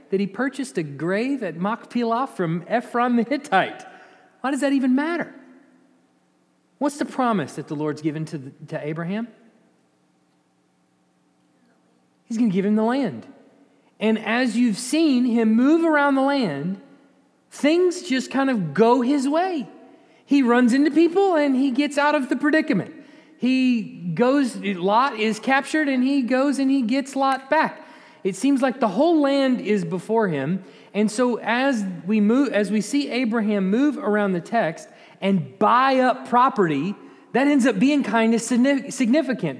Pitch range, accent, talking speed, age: 205-280 Hz, American, 160 wpm, 30-49